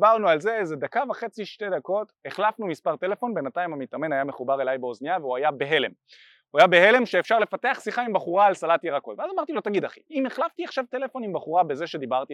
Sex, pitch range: male, 150-230 Hz